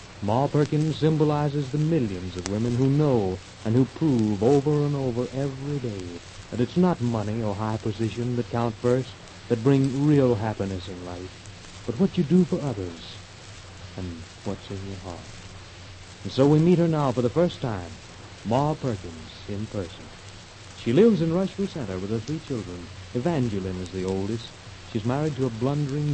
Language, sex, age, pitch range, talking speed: English, male, 60-79, 95-140 Hz, 175 wpm